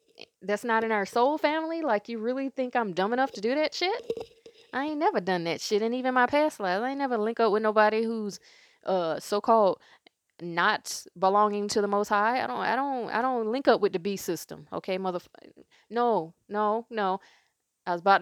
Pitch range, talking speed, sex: 190-235 Hz, 210 wpm, female